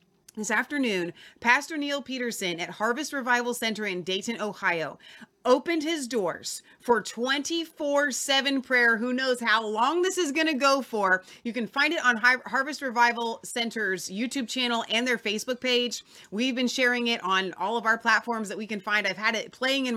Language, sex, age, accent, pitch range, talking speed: English, female, 30-49, American, 190-255 Hz, 180 wpm